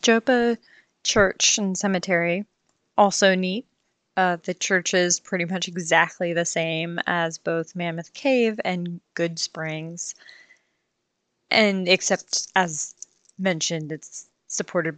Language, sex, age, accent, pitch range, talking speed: English, female, 20-39, American, 165-205 Hz, 110 wpm